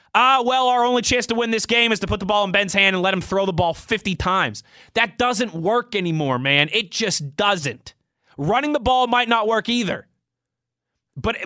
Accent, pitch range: American, 165-225 Hz